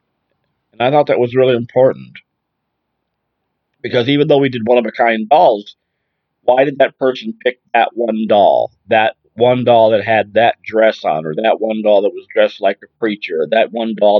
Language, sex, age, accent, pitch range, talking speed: English, male, 50-69, American, 115-150 Hz, 200 wpm